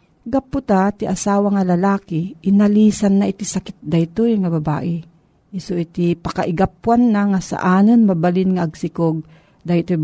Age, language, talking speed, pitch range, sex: 50-69, Filipino, 145 wpm, 160-205 Hz, female